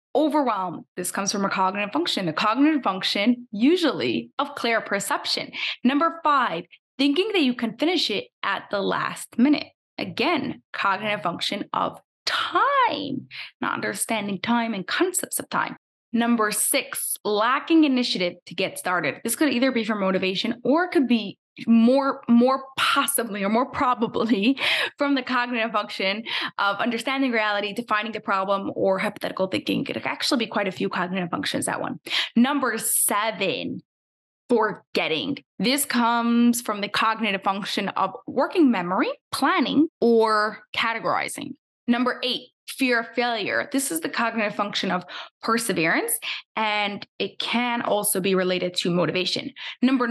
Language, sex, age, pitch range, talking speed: English, female, 20-39, 200-270 Hz, 145 wpm